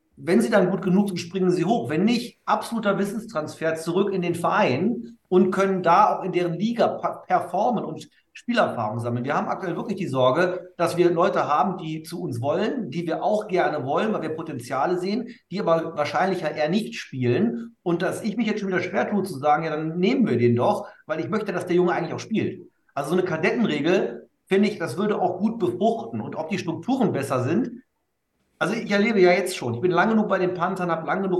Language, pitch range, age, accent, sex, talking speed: German, 155-200 Hz, 50-69, German, male, 225 wpm